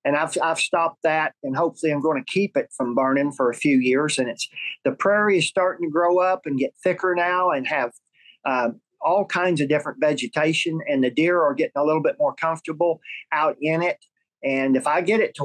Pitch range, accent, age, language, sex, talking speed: 140-180 Hz, American, 50-69, English, male, 225 wpm